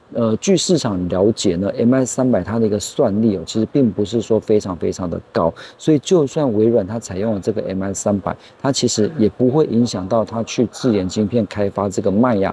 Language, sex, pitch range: Chinese, male, 100-120 Hz